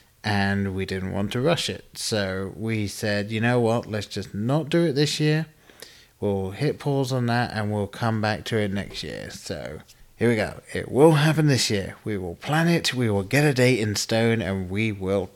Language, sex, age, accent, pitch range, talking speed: English, male, 30-49, British, 100-130 Hz, 220 wpm